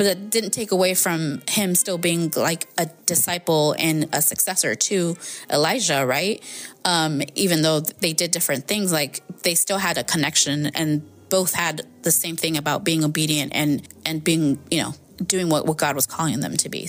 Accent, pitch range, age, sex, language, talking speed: American, 160-200 Hz, 20-39, female, English, 190 wpm